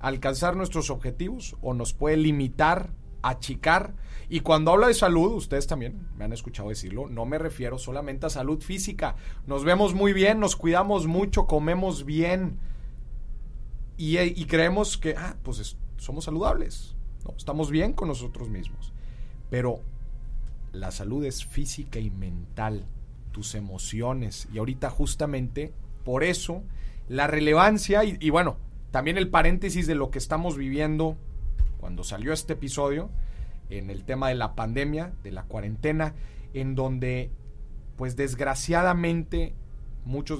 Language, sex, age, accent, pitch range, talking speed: Spanish, male, 40-59, Mexican, 120-160 Hz, 140 wpm